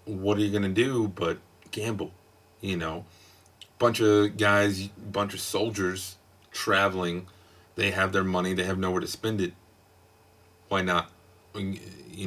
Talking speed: 145 wpm